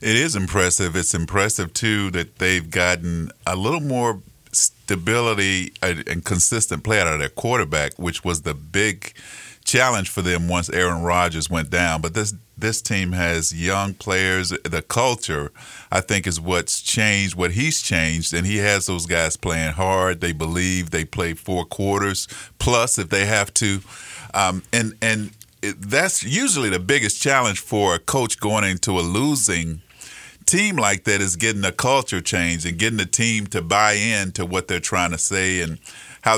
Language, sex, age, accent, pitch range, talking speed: English, male, 50-69, American, 90-110 Hz, 175 wpm